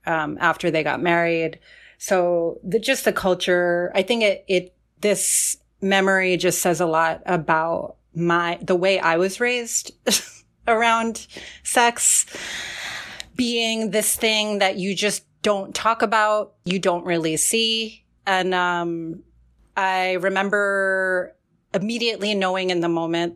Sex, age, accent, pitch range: female, 30-49, American, 170-200 Hz